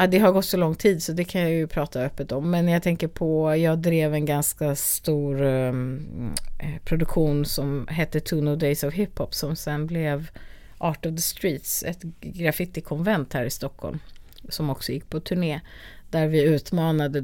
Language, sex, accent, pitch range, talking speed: Swedish, female, native, 145-170 Hz, 180 wpm